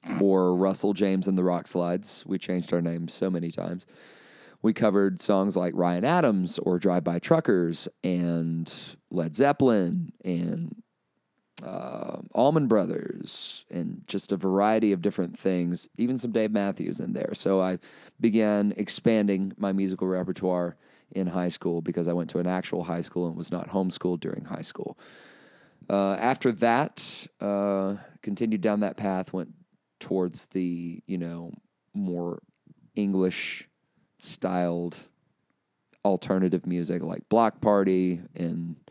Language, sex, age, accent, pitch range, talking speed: English, male, 30-49, American, 90-100 Hz, 135 wpm